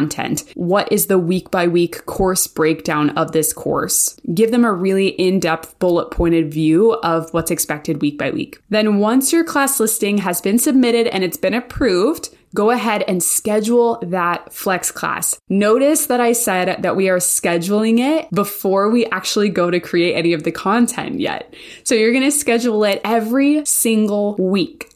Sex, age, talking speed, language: female, 20-39, 165 wpm, English